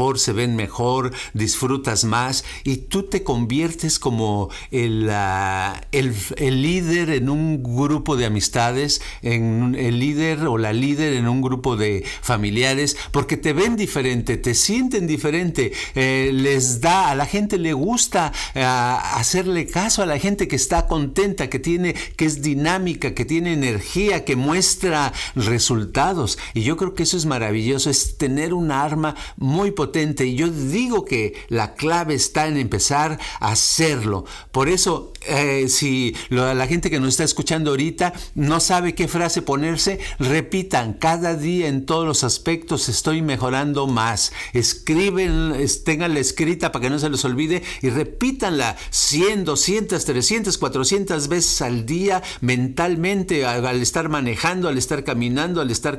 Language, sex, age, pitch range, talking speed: Spanish, male, 50-69, 125-170 Hz, 155 wpm